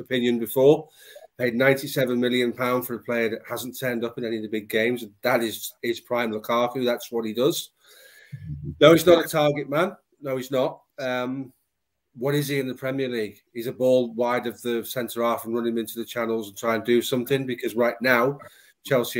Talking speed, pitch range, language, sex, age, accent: 215 wpm, 115-130 Hz, English, male, 30-49, British